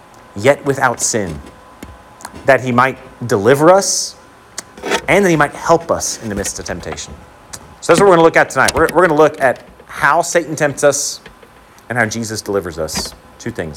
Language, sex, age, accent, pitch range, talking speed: English, male, 40-59, American, 100-140 Hz, 190 wpm